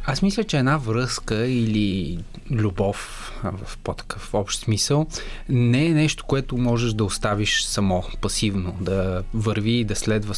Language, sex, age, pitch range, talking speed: Bulgarian, male, 20-39, 105-125 Hz, 145 wpm